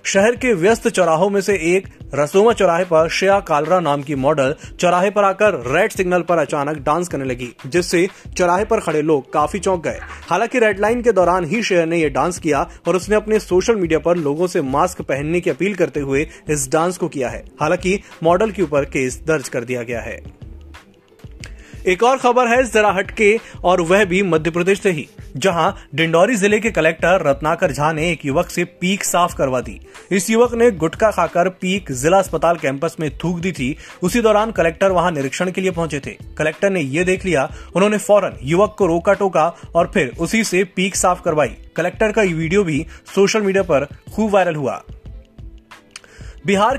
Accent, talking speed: native, 195 wpm